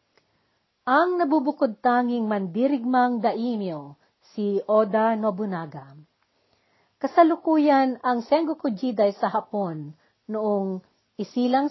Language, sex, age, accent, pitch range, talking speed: Filipino, female, 40-59, native, 195-260 Hz, 75 wpm